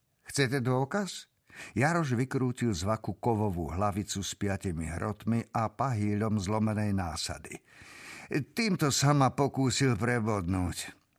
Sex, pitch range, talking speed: male, 100-130 Hz, 95 wpm